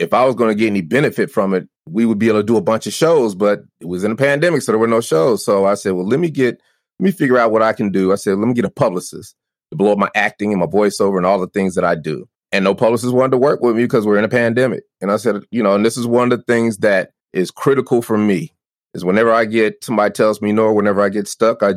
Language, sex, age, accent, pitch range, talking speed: English, male, 30-49, American, 100-125 Hz, 310 wpm